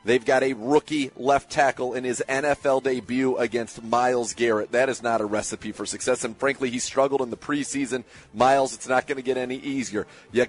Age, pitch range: 30-49, 120-145 Hz